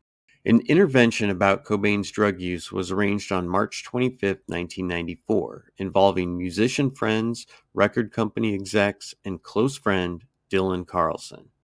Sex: male